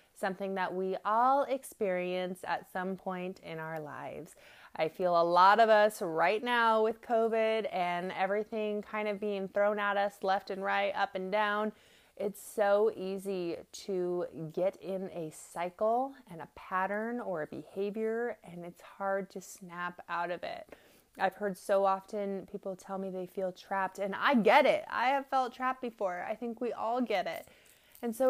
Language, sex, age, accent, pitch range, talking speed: English, female, 20-39, American, 185-220 Hz, 180 wpm